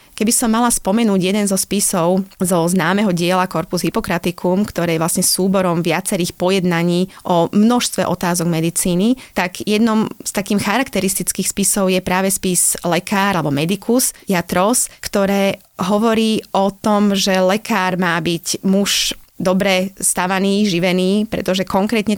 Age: 30-49